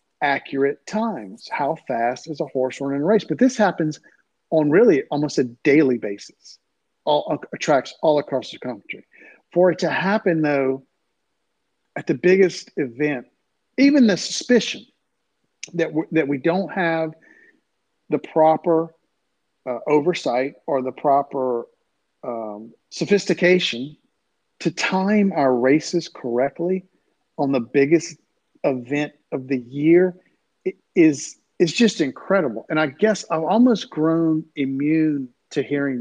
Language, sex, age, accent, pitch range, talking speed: English, male, 40-59, American, 135-180 Hz, 130 wpm